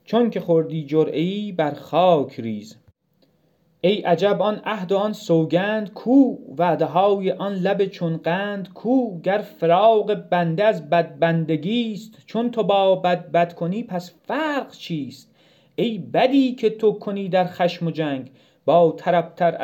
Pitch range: 165-210 Hz